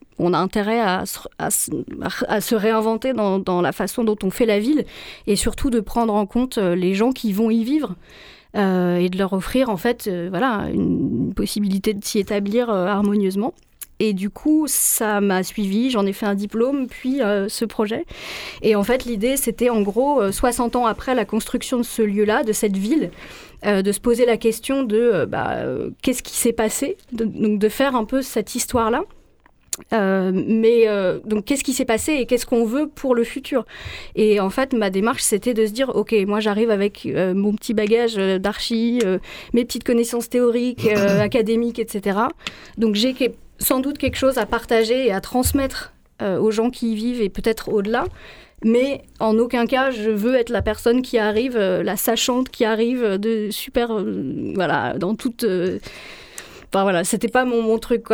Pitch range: 205-245 Hz